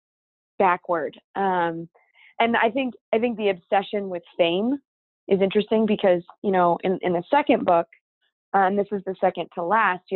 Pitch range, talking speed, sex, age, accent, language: 180-230 Hz, 170 wpm, female, 20-39, American, English